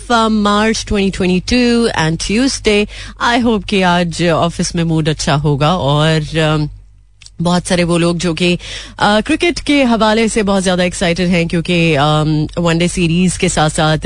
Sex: female